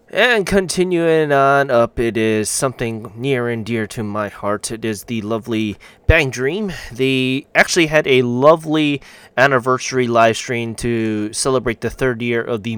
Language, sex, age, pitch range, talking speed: English, male, 20-39, 105-135 Hz, 155 wpm